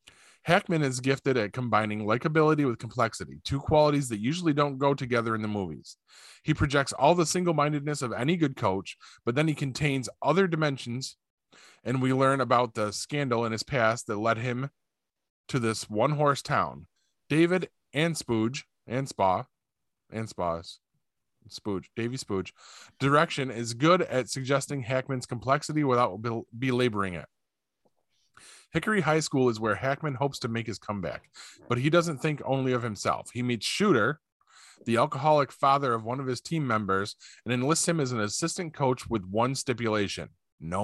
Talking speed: 160 wpm